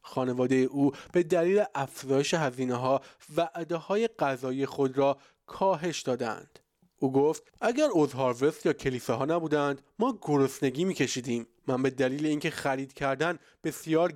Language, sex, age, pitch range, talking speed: Persian, male, 20-39, 135-170 Hz, 135 wpm